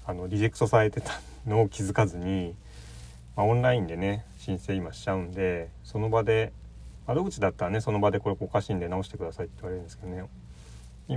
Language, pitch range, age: Japanese, 75-120 Hz, 40-59